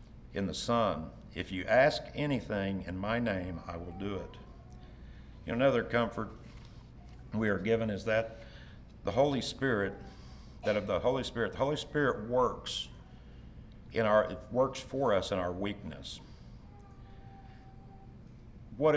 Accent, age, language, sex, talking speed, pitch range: American, 60-79, English, male, 125 wpm, 95-120 Hz